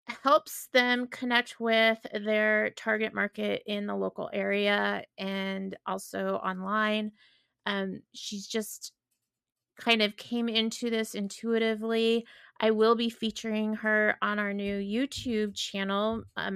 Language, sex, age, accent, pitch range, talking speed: English, female, 30-49, American, 195-225 Hz, 125 wpm